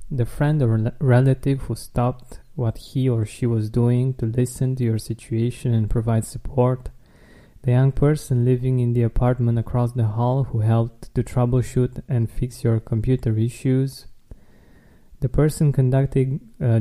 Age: 20-39